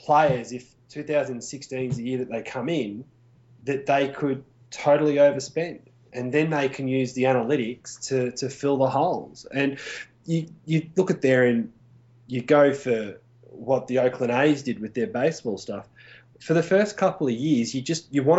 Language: English